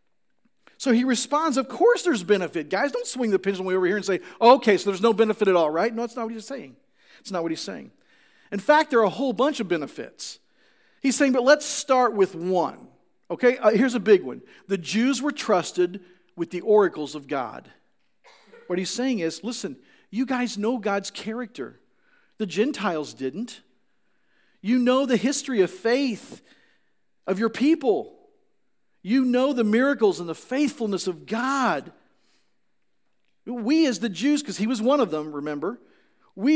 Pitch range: 200-285 Hz